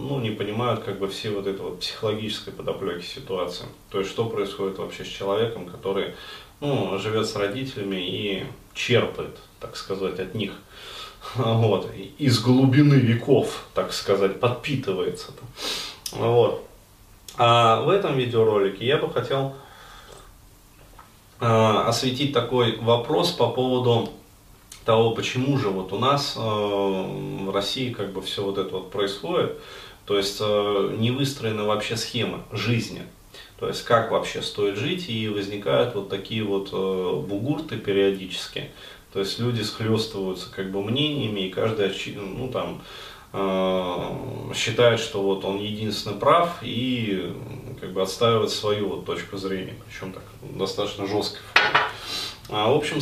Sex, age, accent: male, 30-49, native